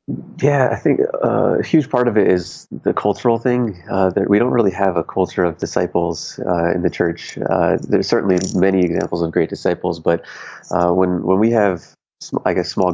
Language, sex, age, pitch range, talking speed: English, male, 30-49, 85-95 Hz, 205 wpm